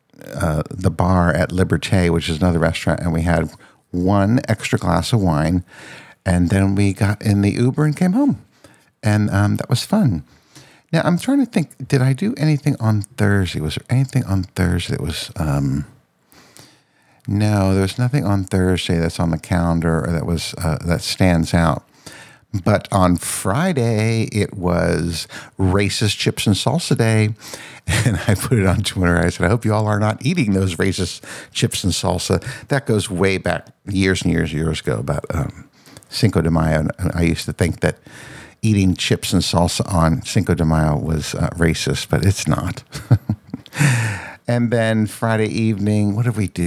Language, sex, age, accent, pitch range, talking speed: English, male, 60-79, American, 90-115 Hz, 180 wpm